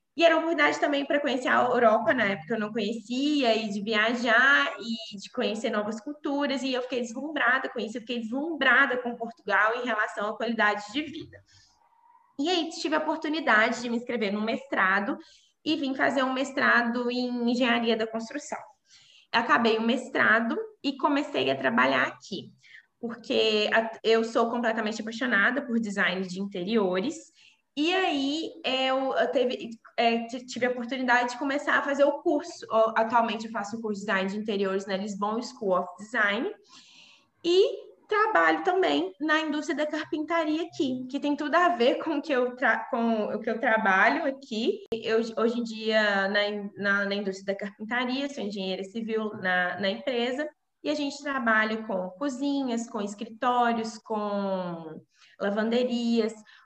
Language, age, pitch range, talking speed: Portuguese, 20-39, 220-290 Hz, 155 wpm